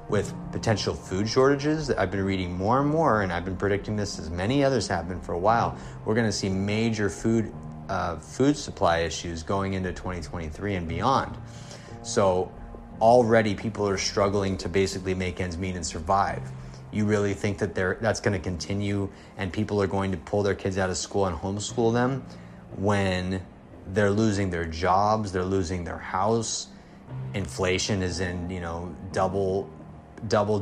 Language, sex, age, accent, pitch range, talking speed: English, male, 30-49, American, 90-115 Hz, 175 wpm